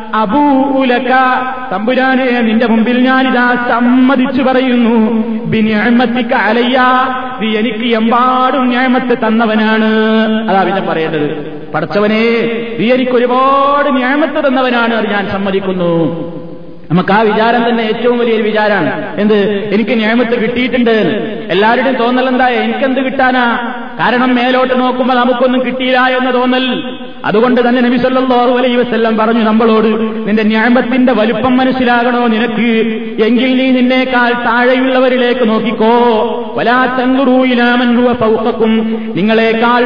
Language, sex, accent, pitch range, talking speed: Malayalam, male, native, 220-255 Hz, 85 wpm